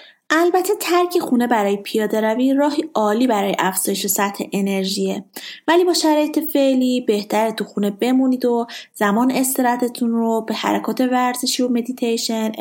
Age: 30-49